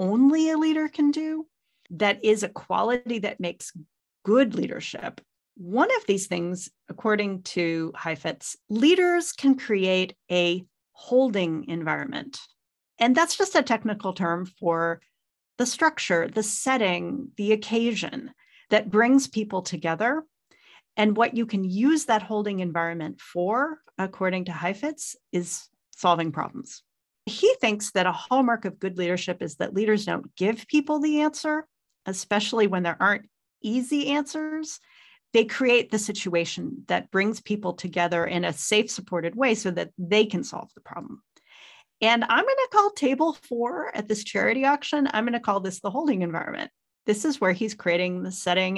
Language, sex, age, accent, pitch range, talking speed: English, female, 40-59, American, 180-270 Hz, 155 wpm